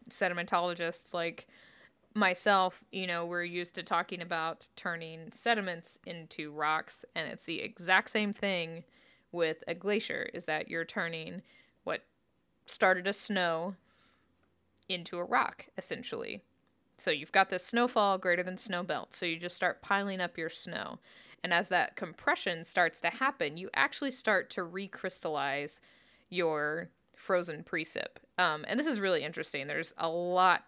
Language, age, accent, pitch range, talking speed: English, 20-39, American, 170-200 Hz, 150 wpm